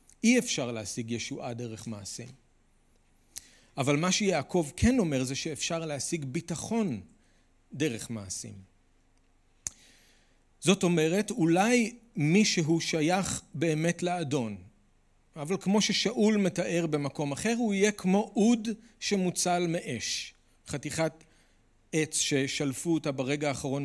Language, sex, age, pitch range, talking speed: Hebrew, male, 40-59, 130-185 Hz, 105 wpm